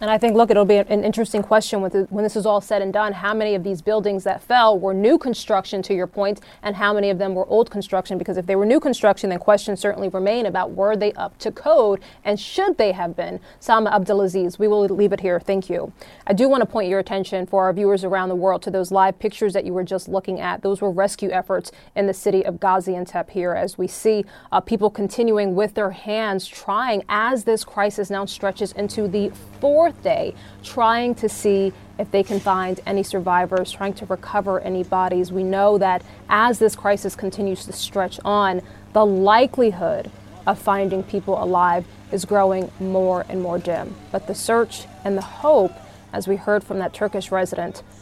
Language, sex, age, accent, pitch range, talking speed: English, female, 20-39, American, 190-215 Hz, 210 wpm